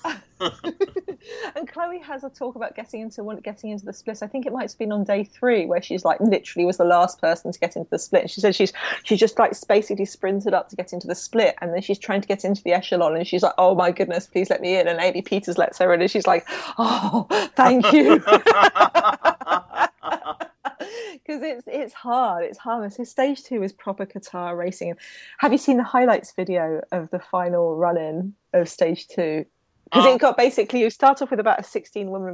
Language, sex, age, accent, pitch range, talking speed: English, female, 30-49, British, 175-225 Hz, 215 wpm